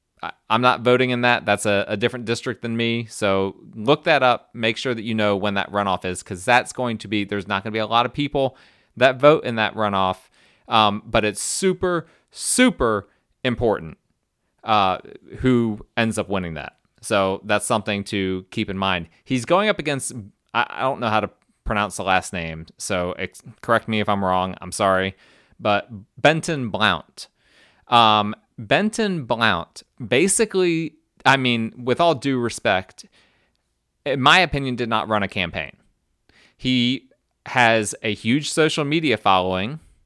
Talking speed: 170 wpm